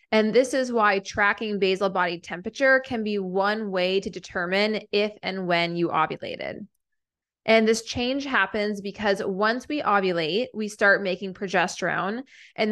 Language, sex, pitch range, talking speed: English, female, 190-225 Hz, 150 wpm